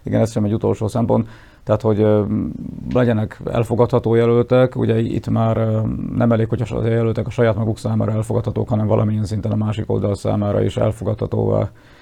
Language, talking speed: Hungarian, 165 wpm